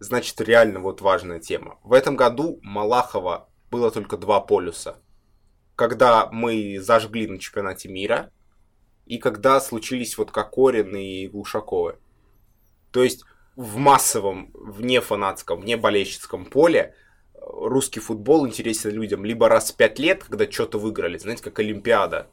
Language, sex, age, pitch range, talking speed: Russian, male, 20-39, 110-135 Hz, 135 wpm